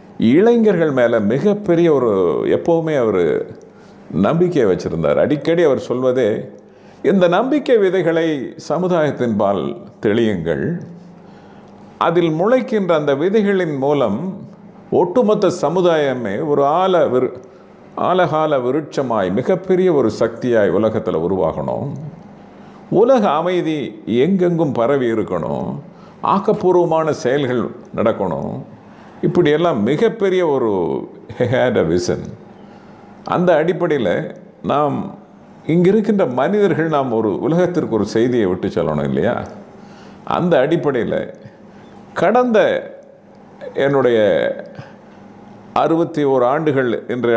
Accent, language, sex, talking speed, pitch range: native, Tamil, male, 85 wpm, 140-200 Hz